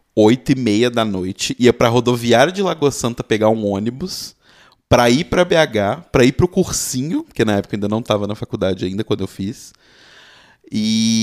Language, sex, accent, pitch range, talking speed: Portuguese, male, Brazilian, 110-150 Hz, 190 wpm